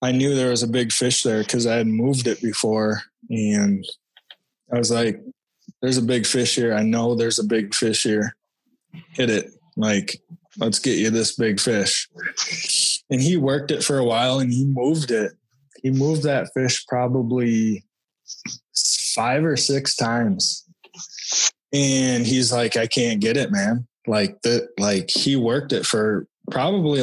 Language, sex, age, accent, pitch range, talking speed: English, male, 20-39, American, 110-145 Hz, 165 wpm